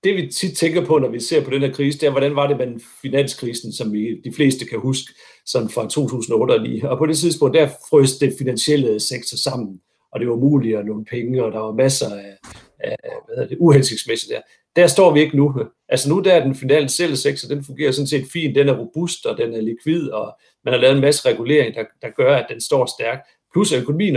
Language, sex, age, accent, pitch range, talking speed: Danish, male, 60-79, native, 120-160 Hz, 240 wpm